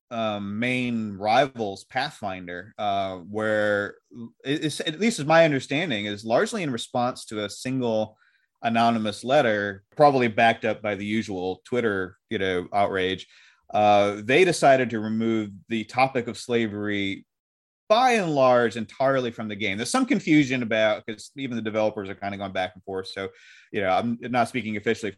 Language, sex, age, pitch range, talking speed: English, male, 30-49, 100-120 Hz, 160 wpm